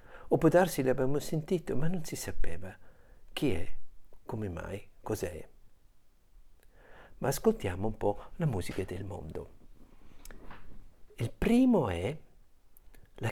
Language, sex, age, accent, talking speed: Italian, male, 60-79, native, 115 wpm